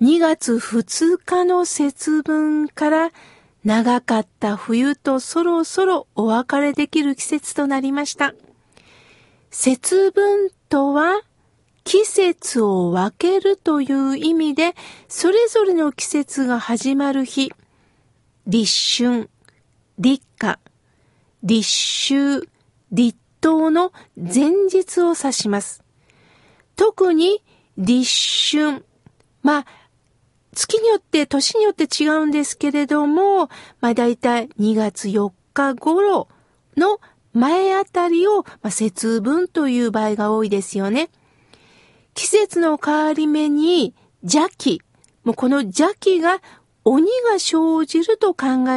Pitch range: 230-340 Hz